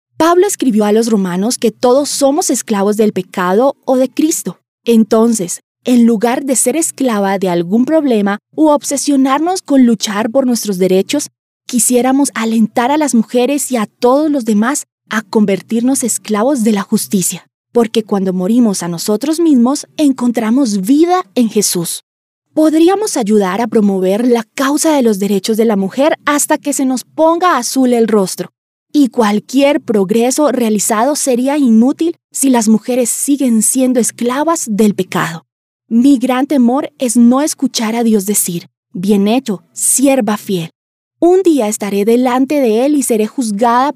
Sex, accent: female, Colombian